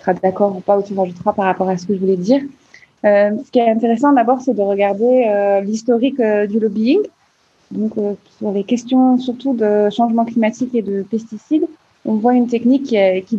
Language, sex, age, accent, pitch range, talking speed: French, female, 20-39, French, 195-240 Hz, 210 wpm